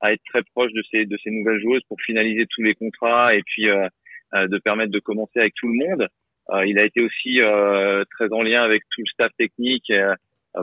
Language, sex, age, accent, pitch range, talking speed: French, male, 30-49, French, 105-120 Hz, 230 wpm